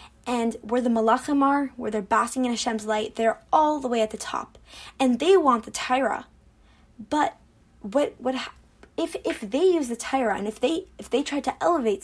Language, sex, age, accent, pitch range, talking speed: English, female, 10-29, American, 240-320 Hz, 200 wpm